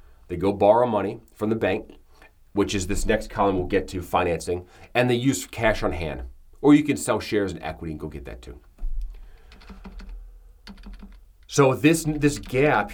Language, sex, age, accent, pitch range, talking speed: English, male, 30-49, American, 90-115 Hz, 175 wpm